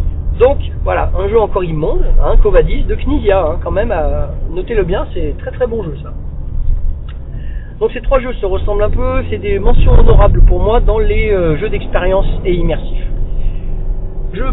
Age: 40-59